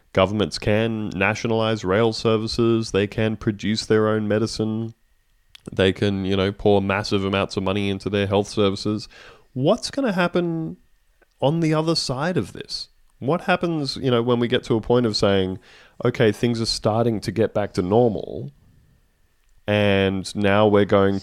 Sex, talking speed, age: male, 165 wpm, 20-39